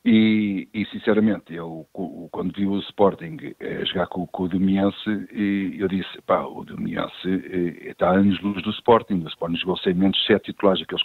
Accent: Portuguese